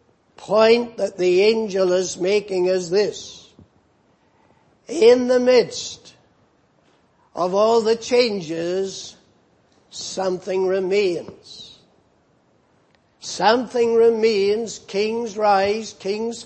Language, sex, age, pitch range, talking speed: English, male, 60-79, 185-225 Hz, 80 wpm